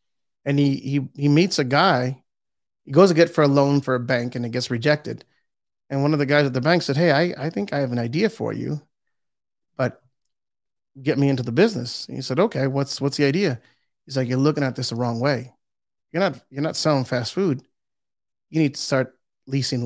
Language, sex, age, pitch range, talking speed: English, male, 30-49, 130-150 Hz, 225 wpm